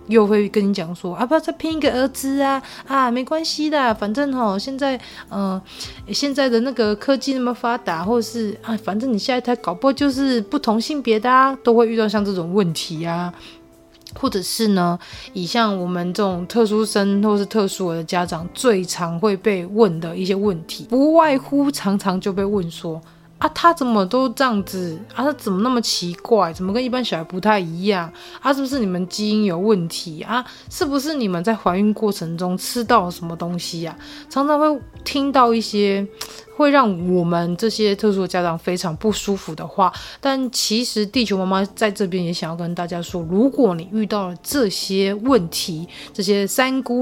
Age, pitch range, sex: 20-39, 180-250 Hz, female